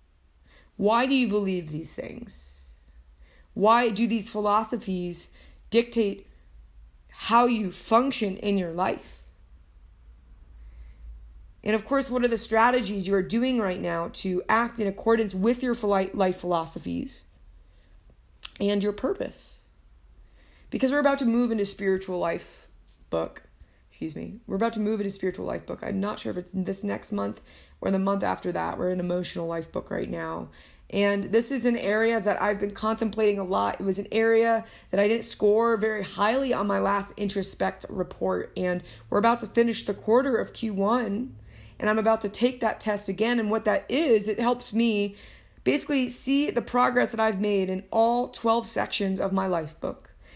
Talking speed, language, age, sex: 170 wpm, English, 20-39, female